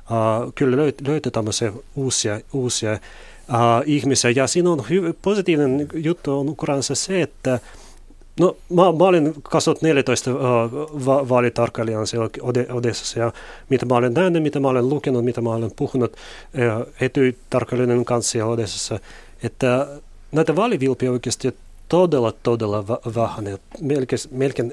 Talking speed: 130 wpm